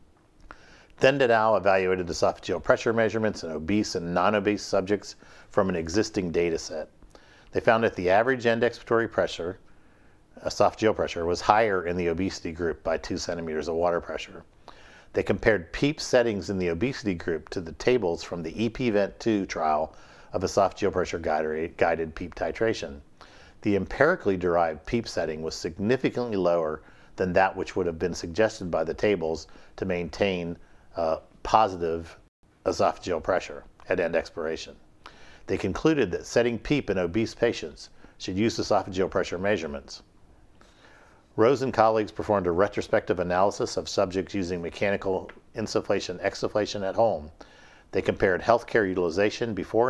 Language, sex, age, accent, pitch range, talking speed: English, male, 50-69, American, 85-110 Hz, 155 wpm